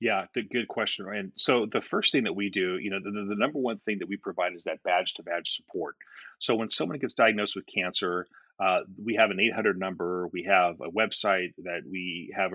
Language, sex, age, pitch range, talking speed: English, male, 30-49, 95-115 Hz, 225 wpm